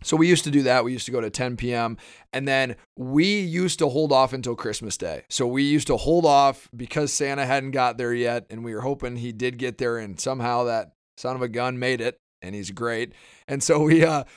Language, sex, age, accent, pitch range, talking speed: English, male, 30-49, American, 120-150 Hz, 245 wpm